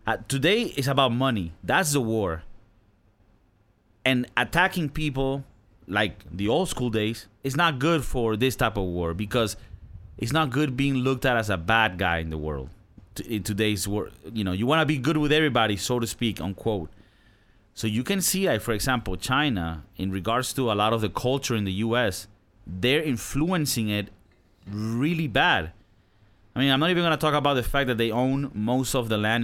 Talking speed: 200 wpm